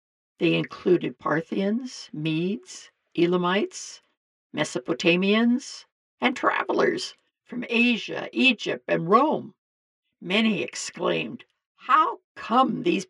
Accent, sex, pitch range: American, female, 160-250 Hz